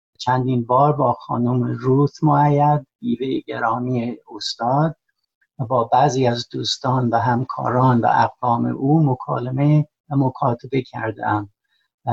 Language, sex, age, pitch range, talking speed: Persian, male, 60-79, 120-145 Hz, 120 wpm